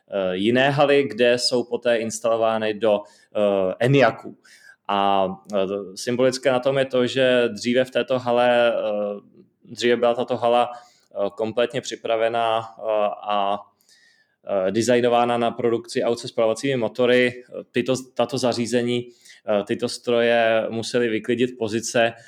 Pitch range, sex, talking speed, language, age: 105-120 Hz, male, 130 wpm, Czech, 20-39